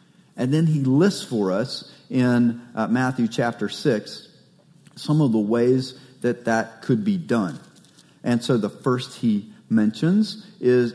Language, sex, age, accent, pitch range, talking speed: English, male, 40-59, American, 130-195 Hz, 150 wpm